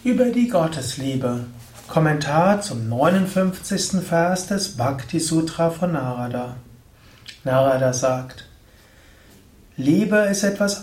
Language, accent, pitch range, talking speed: German, German, 120-180 Hz, 90 wpm